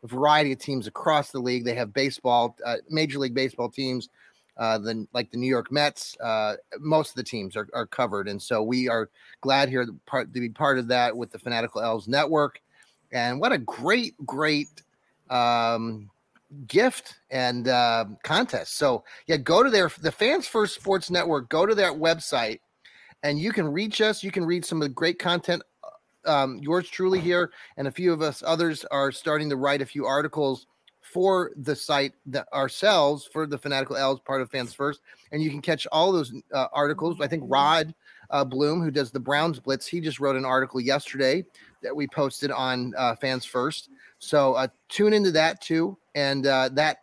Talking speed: 200 wpm